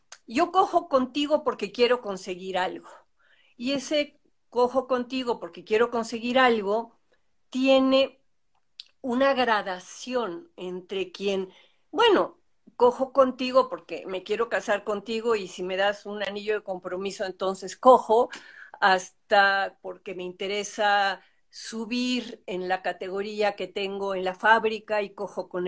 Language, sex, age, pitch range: Spanish, female, 50-69, 195-260 Hz